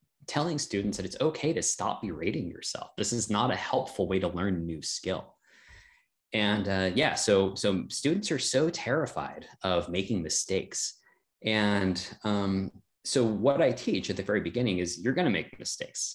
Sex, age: male, 20-39